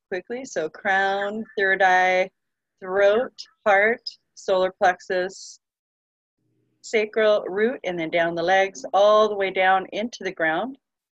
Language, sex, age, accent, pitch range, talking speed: English, female, 40-59, American, 165-200 Hz, 125 wpm